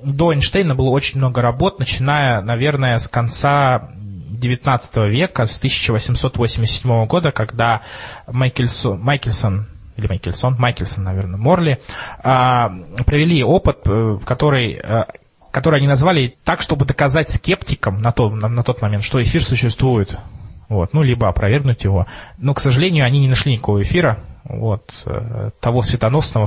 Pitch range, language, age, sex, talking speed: 110-140 Hz, Russian, 20-39, male, 120 wpm